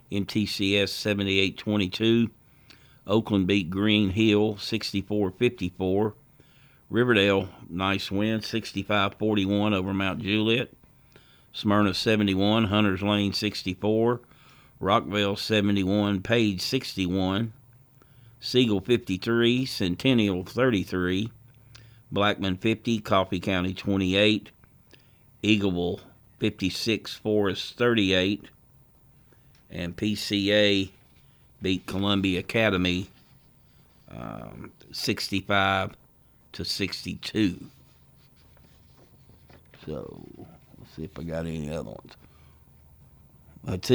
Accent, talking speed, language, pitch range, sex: American, 80 wpm, English, 95-115 Hz, male